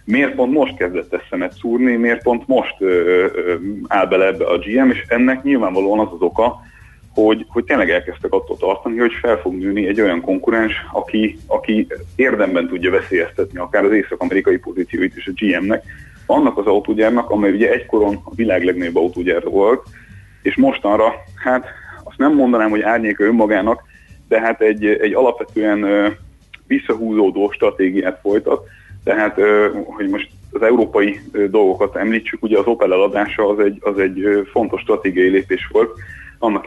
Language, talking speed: Hungarian, 155 wpm